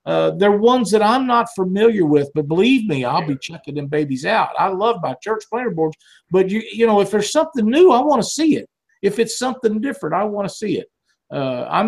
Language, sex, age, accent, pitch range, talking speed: English, male, 50-69, American, 150-235 Hz, 240 wpm